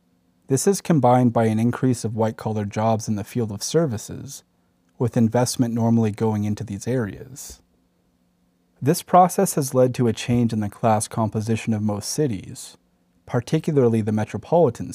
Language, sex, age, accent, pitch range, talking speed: English, male, 30-49, American, 100-125 Hz, 155 wpm